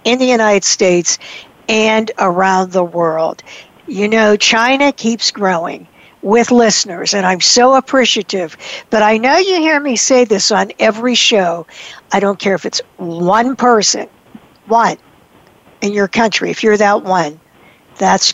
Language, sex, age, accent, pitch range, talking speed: English, female, 60-79, American, 195-255 Hz, 150 wpm